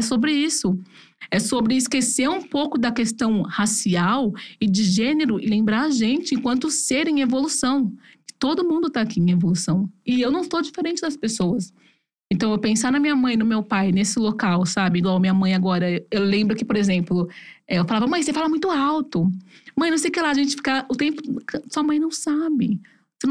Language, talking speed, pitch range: Portuguese, 205 wpm, 220-300 Hz